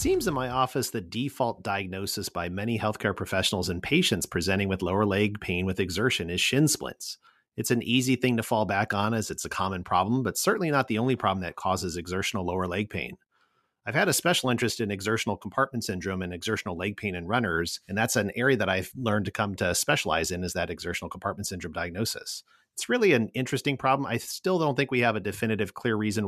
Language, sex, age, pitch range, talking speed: English, male, 40-59, 95-120 Hz, 220 wpm